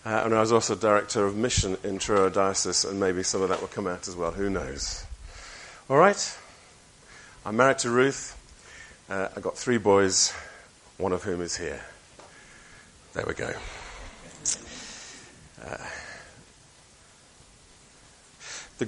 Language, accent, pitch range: English, British, 100-135 Hz